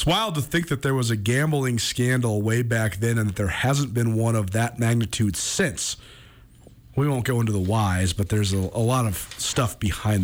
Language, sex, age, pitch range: English, male, 40-59, 105-130 Hz